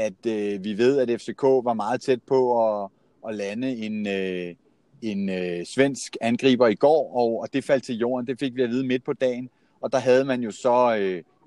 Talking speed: 220 wpm